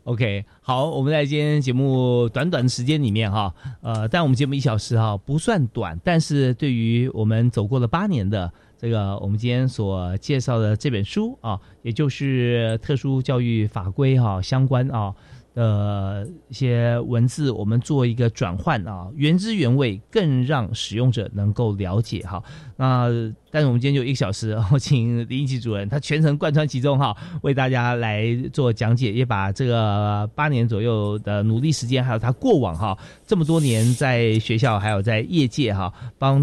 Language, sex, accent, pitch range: Chinese, male, native, 110-140 Hz